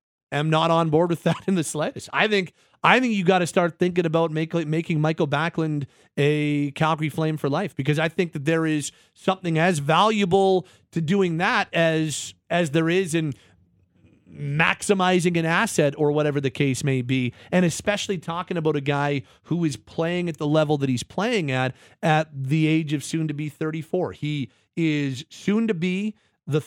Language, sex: English, male